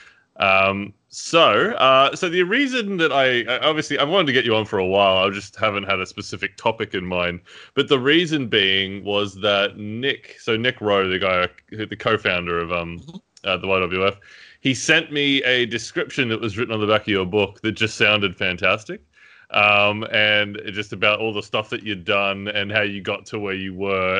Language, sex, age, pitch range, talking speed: English, male, 20-39, 100-125 Hz, 205 wpm